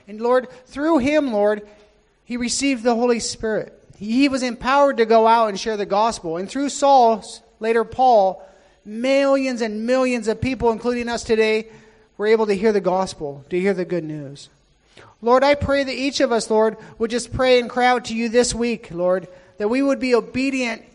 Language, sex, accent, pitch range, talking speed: English, male, American, 210-255 Hz, 195 wpm